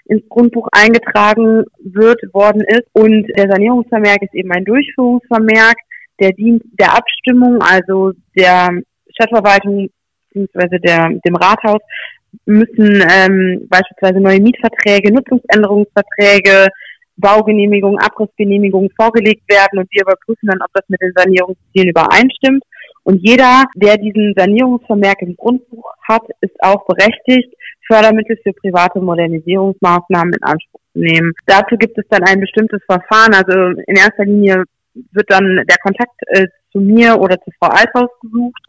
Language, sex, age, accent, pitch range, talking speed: German, female, 20-39, German, 185-220 Hz, 130 wpm